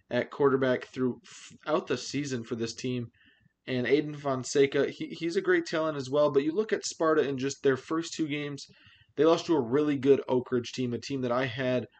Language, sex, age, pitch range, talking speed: English, male, 20-39, 125-145 Hz, 215 wpm